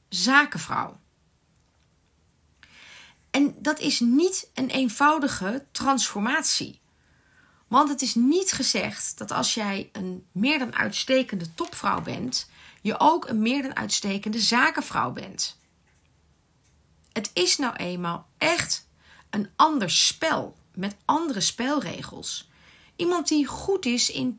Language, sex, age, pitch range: Dutch, female, 30-49, 195-275 Hz